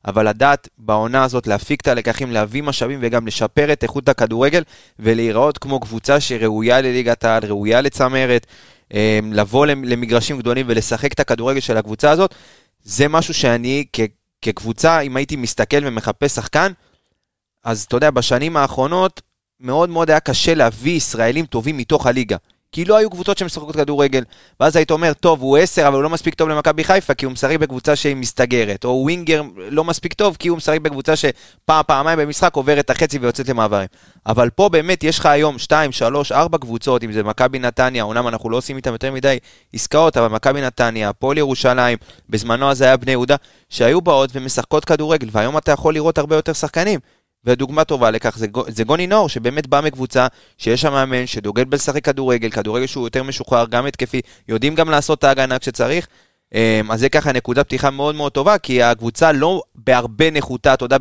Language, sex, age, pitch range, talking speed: Hebrew, male, 20-39, 120-150 Hz, 175 wpm